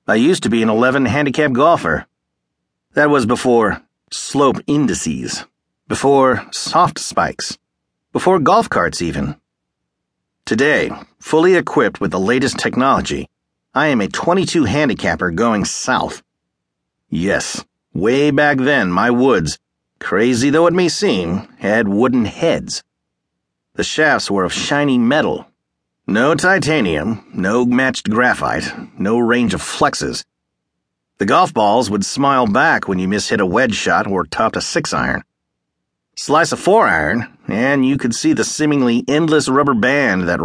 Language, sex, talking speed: English, male, 135 wpm